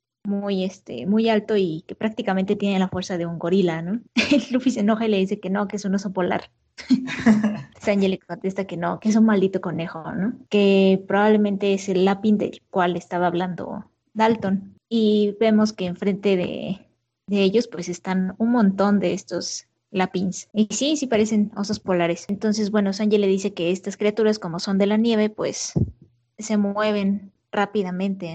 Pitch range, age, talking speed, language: 180-210 Hz, 20-39, 180 wpm, Spanish